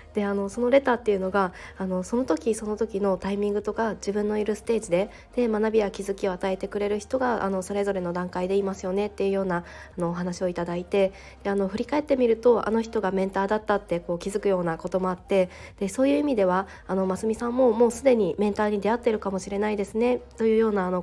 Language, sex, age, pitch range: Japanese, female, 20-39, 190-225 Hz